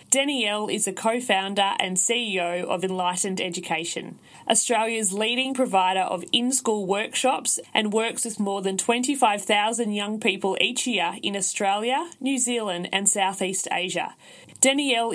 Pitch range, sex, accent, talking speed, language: 200-255 Hz, female, Australian, 135 wpm, English